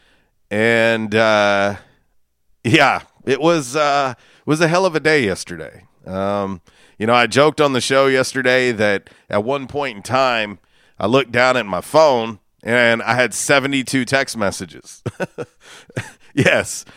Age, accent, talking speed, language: 40-59, American, 150 wpm, English